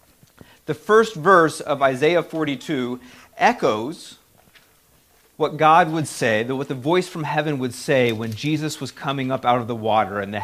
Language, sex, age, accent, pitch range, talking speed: English, male, 40-59, American, 125-160 Hz, 165 wpm